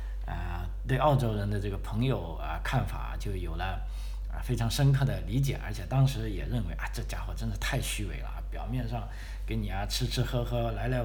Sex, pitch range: male, 95-135 Hz